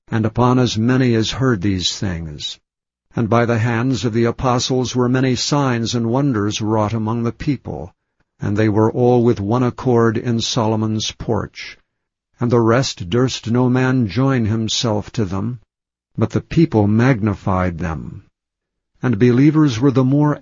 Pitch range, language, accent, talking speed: 110-135 Hz, English, American, 160 wpm